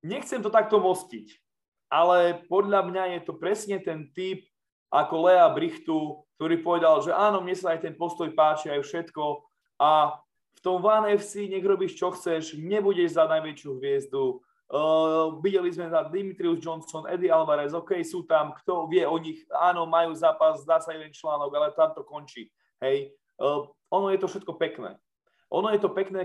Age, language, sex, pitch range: 20-39, Slovak, male, 155-190 Hz